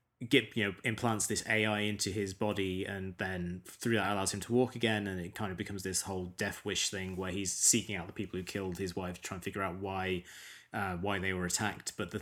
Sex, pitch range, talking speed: male, 95-110 Hz, 250 wpm